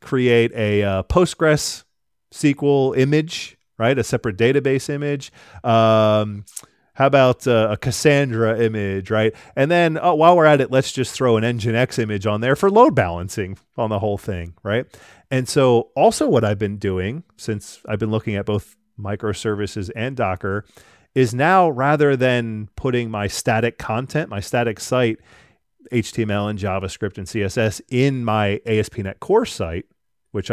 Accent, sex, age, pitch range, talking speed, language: American, male, 30-49, 100-130 Hz, 155 wpm, English